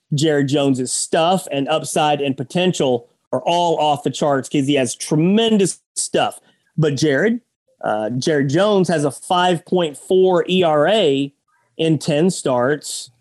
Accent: American